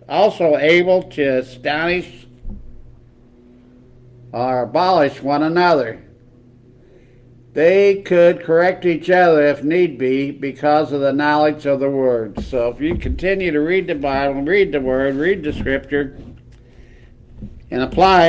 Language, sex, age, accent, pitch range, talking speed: English, male, 60-79, American, 125-165 Hz, 130 wpm